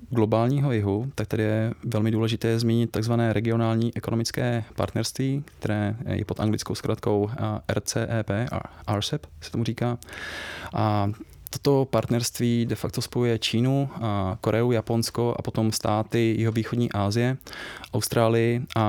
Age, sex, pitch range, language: 20-39, male, 105-115 Hz, English